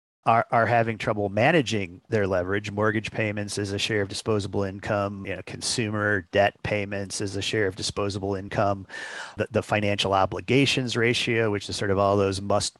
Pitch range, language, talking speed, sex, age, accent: 100-120 Hz, English, 180 wpm, male, 40-59, American